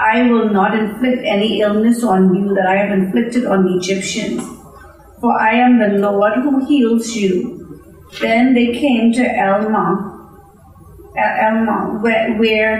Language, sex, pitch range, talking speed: English, female, 200-235 Hz, 140 wpm